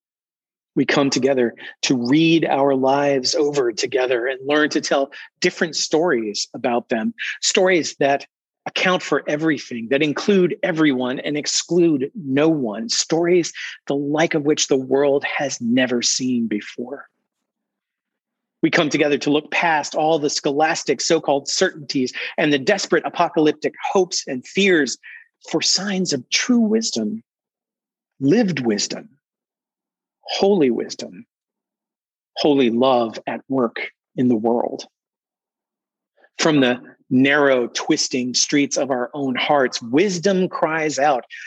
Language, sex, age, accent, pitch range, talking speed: English, male, 40-59, American, 135-175 Hz, 125 wpm